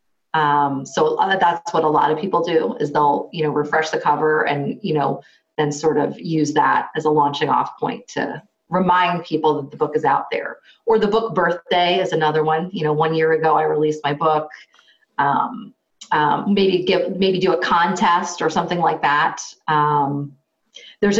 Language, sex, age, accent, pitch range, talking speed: English, female, 30-49, American, 155-215 Hz, 190 wpm